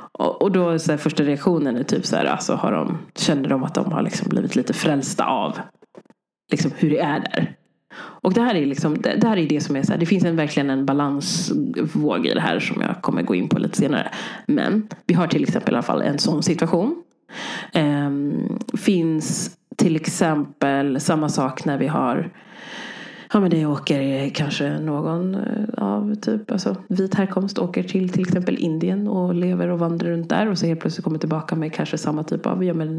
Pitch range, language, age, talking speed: 155-205 Hz, Swedish, 30-49, 205 wpm